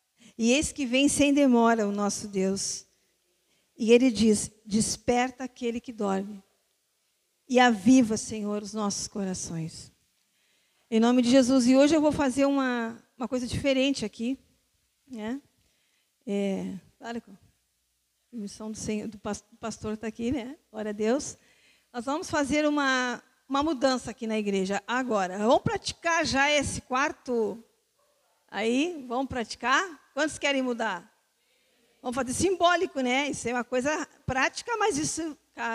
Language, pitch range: Portuguese, 230-285 Hz